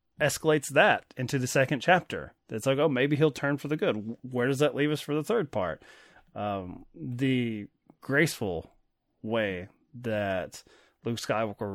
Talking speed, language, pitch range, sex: 160 wpm, English, 105-135 Hz, male